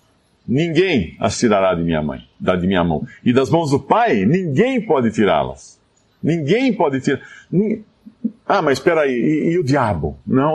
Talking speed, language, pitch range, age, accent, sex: 165 wpm, Portuguese, 125-170 Hz, 50-69, Brazilian, male